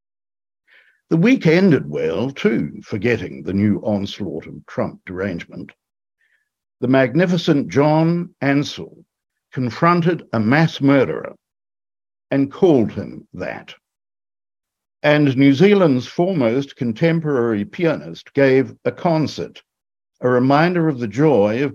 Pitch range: 105-155 Hz